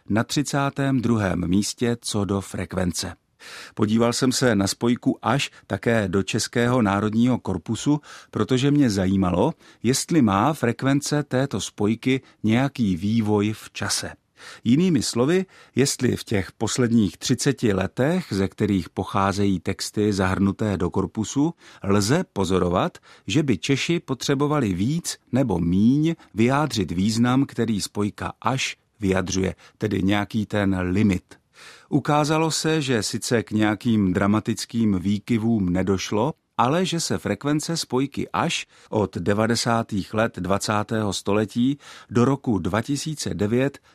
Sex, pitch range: male, 100-130 Hz